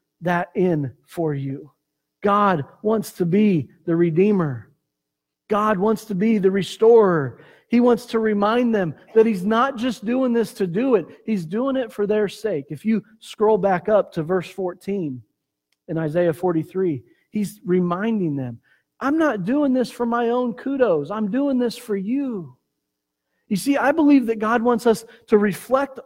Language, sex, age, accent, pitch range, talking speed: English, male, 40-59, American, 165-230 Hz, 170 wpm